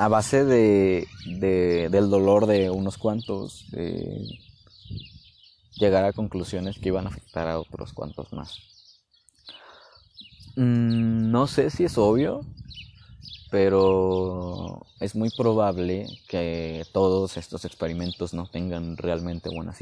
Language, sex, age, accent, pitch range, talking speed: Spanish, male, 20-39, Mexican, 85-105 Hz, 120 wpm